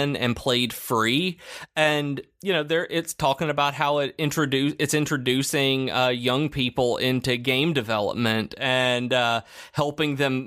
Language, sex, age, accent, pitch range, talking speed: English, male, 30-49, American, 120-145 Hz, 145 wpm